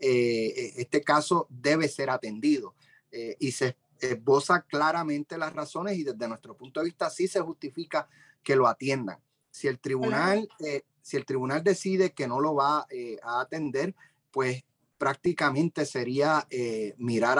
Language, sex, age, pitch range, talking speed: English, male, 30-49, 130-175 Hz, 155 wpm